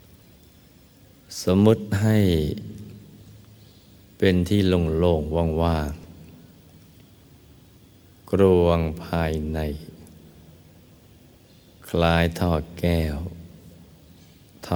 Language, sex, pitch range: Thai, male, 80-100 Hz